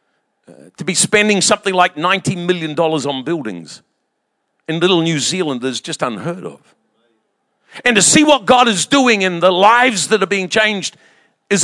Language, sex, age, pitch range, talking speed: English, male, 50-69, 185-250 Hz, 170 wpm